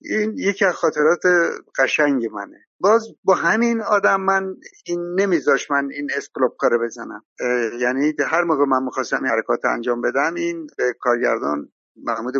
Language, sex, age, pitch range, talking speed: Persian, male, 60-79, 135-185 Hz, 150 wpm